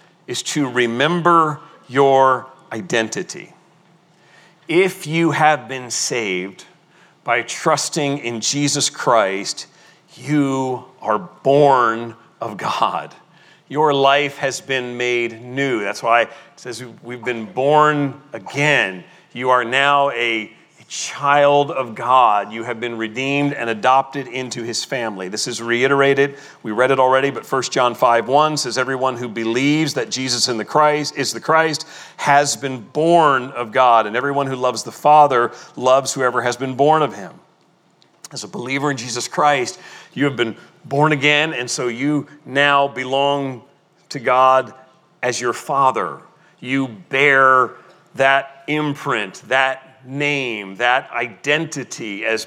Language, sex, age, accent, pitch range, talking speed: English, male, 40-59, American, 125-150 Hz, 135 wpm